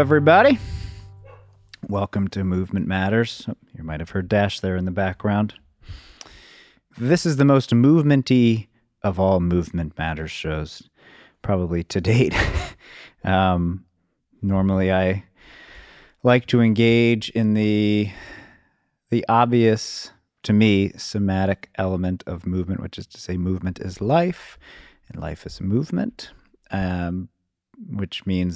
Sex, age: male, 30-49